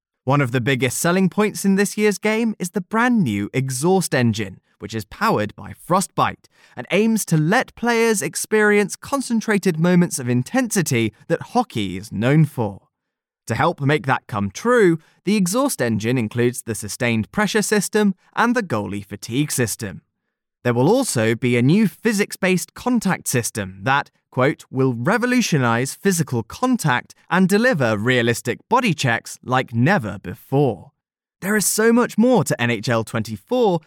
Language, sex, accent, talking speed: English, male, British, 150 wpm